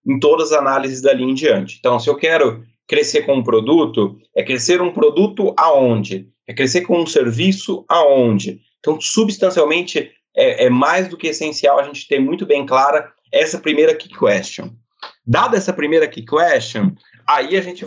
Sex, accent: male, Brazilian